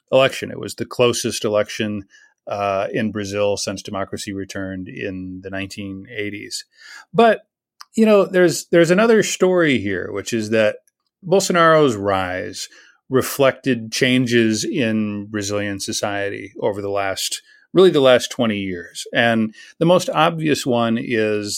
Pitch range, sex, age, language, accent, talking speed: 105-145 Hz, male, 40-59, English, American, 130 wpm